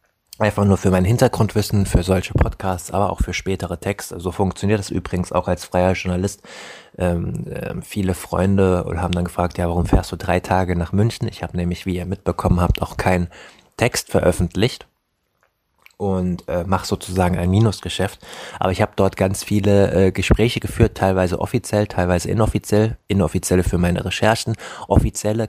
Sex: male